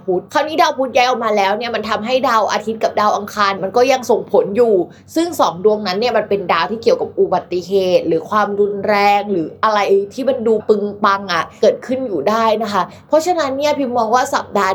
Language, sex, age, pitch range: Thai, female, 20-39, 190-250 Hz